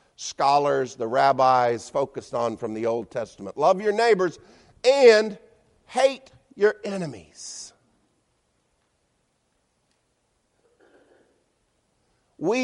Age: 50-69